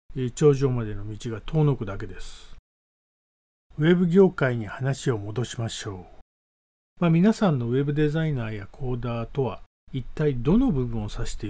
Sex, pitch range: male, 105-155 Hz